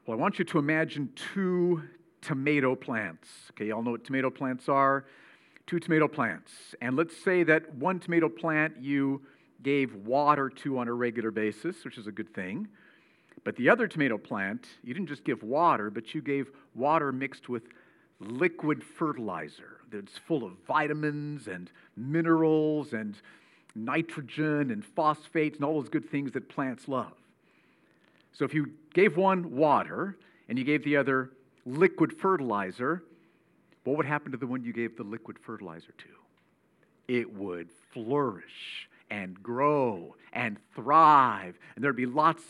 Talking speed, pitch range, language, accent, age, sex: 160 wpm, 125-165 Hz, English, American, 50-69, male